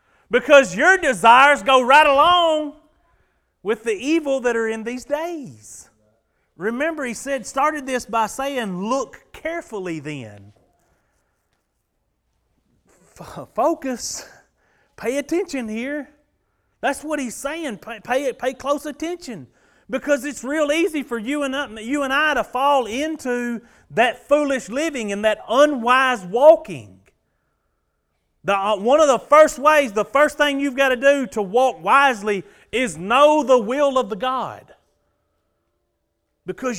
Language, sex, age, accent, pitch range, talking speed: English, male, 40-59, American, 215-290 Hz, 130 wpm